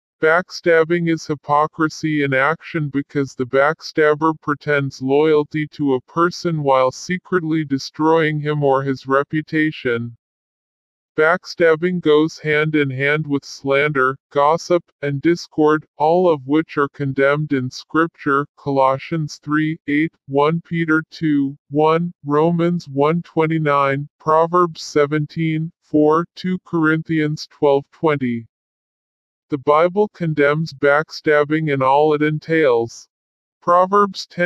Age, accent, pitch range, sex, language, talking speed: 50-69, American, 140-160 Hz, female, English, 110 wpm